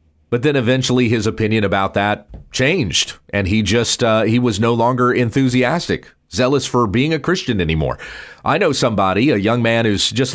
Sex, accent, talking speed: male, American, 180 wpm